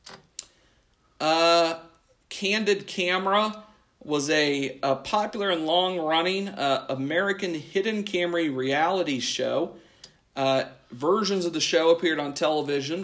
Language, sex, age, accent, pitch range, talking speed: English, male, 40-59, American, 135-180 Hz, 100 wpm